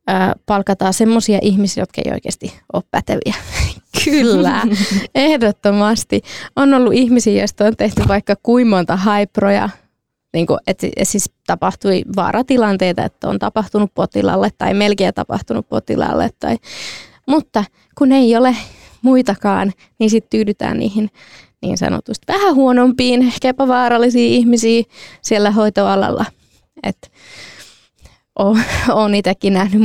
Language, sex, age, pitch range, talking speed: Finnish, female, 20-39, 200-240 Hz, 110 wpm